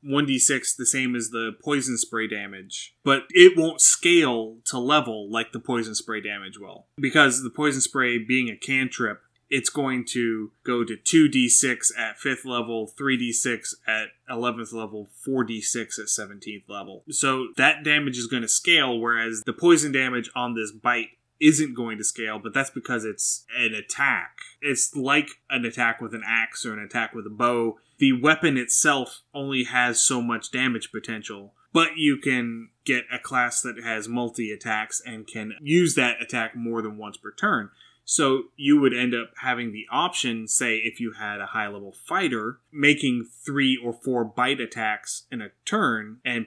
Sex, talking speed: male, 175 wpm